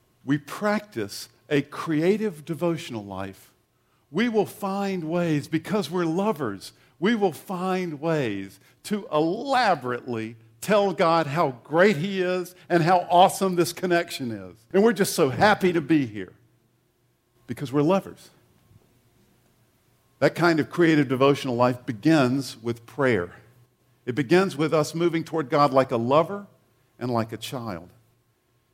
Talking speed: 135 wpm